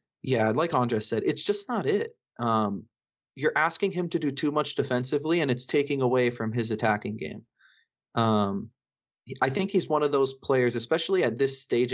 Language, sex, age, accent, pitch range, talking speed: English, male, 30-49, American, 115-145 Hz, 185 wpm